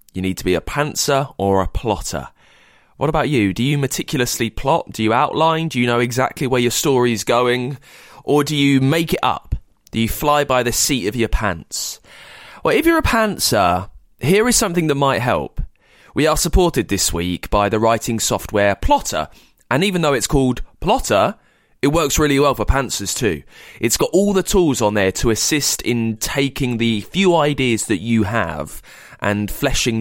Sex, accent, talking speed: male, British, 190 wpm